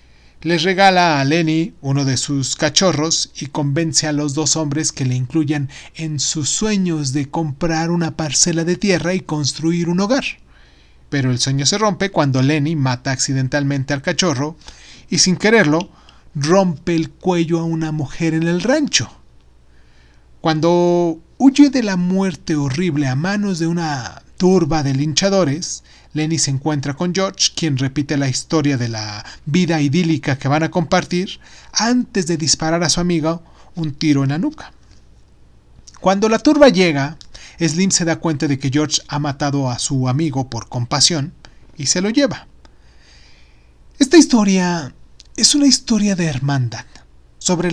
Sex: male